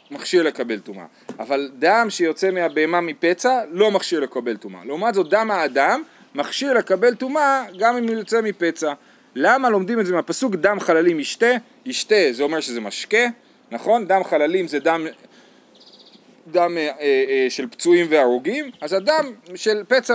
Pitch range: 155-235 Hz